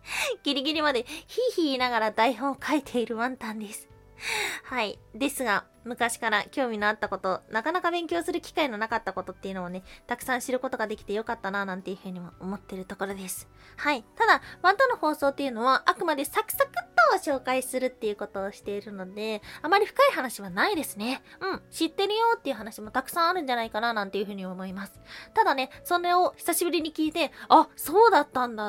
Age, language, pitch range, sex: 20-39, Japanese, 210-310 Hz, female